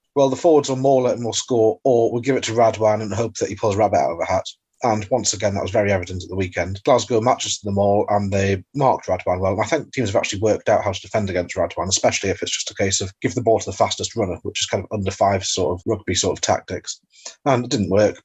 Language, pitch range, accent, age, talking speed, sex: English, 105-130 Hz, British, 30-49, 285 wpm, male